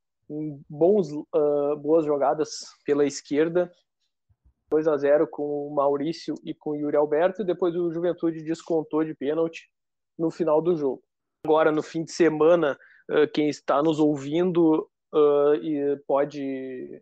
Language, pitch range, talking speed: Portuguese, 145-175 Hz, 140 wpm